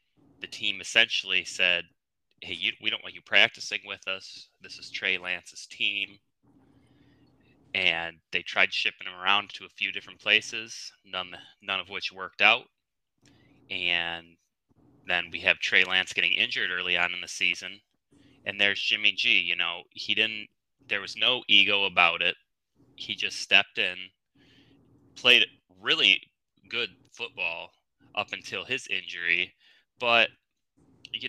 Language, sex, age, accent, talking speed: English, male, 20-39, American, 145 wpm